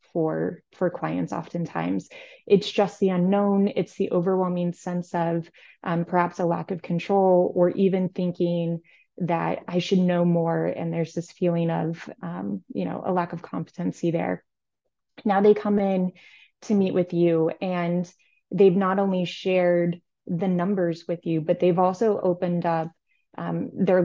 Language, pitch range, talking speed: English, 175-205 Hz, 160 wpm